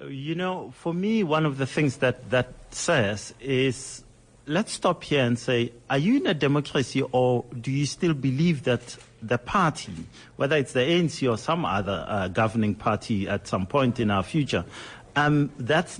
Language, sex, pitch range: English, male, 115-150 Hz